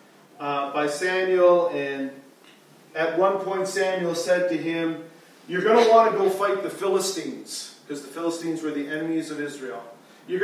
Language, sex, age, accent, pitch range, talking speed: English, male, 40-59, American, 160-210 Hz, 165 wpm